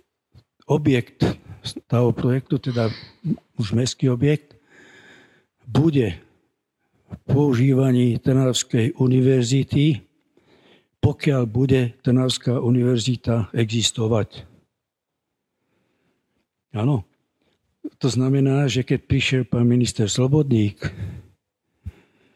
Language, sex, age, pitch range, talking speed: Slovak, male, 60-79, 115-135 Hz, 70 wpm